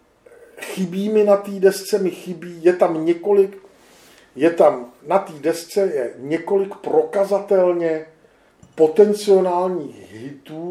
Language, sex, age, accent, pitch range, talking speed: Czech, male, 50-69, native, 145-180 Hz, 100 wpm